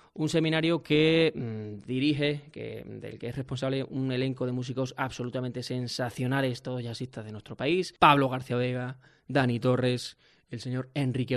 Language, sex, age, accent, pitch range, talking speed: Spanish, male, 20-39, Spanish, 125-145 Hz, 155 wpm